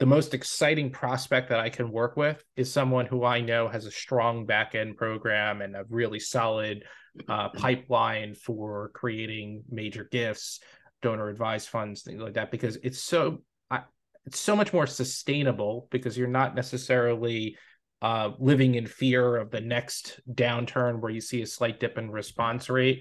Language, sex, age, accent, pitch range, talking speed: English, male, 20-39, American, 110-130 Hz, 160 wpm